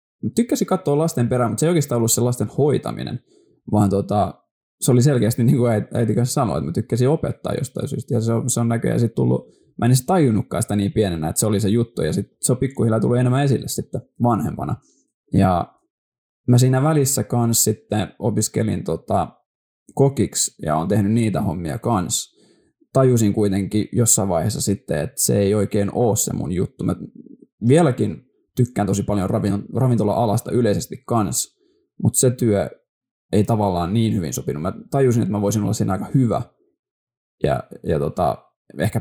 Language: Finnish